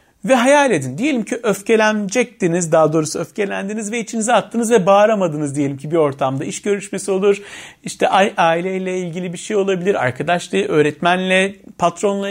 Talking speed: 145 wpm